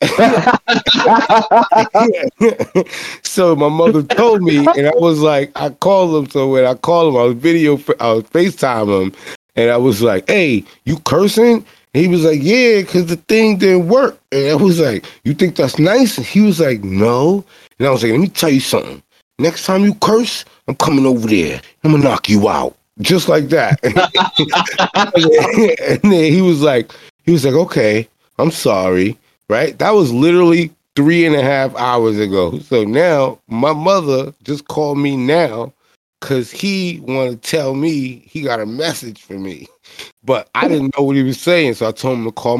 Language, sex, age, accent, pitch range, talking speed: English, male, 20-39, American, 125-185 Hz, 190 wpm